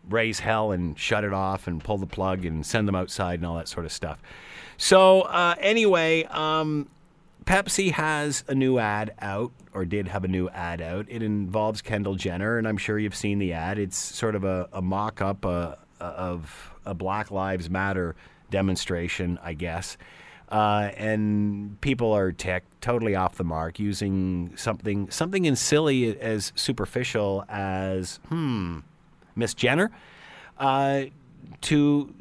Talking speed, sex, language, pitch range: 155 wpm, male, English, 95-125 Hz